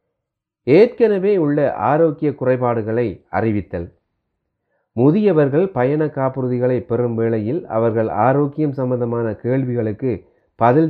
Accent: native